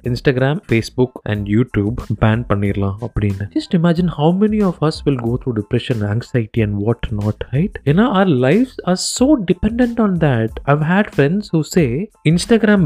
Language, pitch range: Tamil, 115-175 Hz